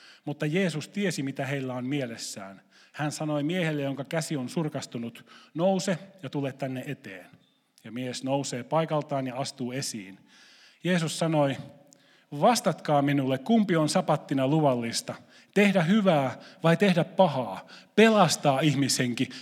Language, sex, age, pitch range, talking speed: Finnish, male, 30-49, 130-170 Hz, 125 wpm